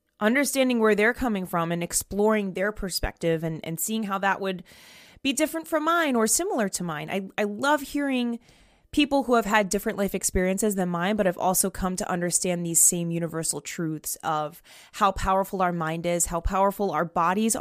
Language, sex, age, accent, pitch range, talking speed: English, female, 20-39, American, 180-235 Hz, 190 wpm